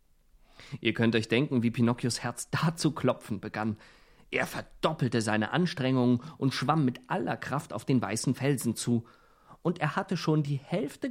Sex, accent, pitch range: male, German, 125-170 Hz